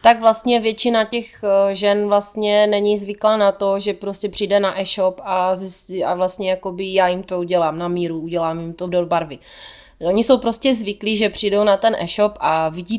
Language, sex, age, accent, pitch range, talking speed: Czech, female, 30-49, native, 175-205 Hz, 195 wpm